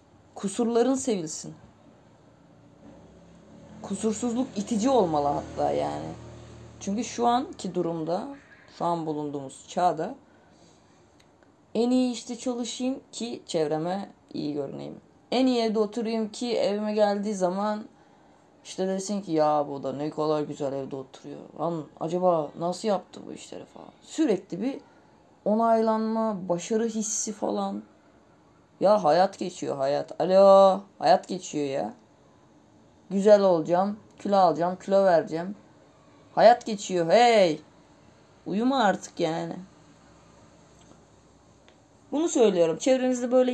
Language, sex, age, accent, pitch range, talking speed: Turkish, female, 30-49, native, 160-225 Hz, 110 wpm